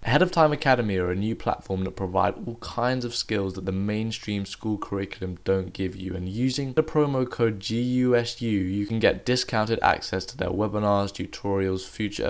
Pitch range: 95-115 Hz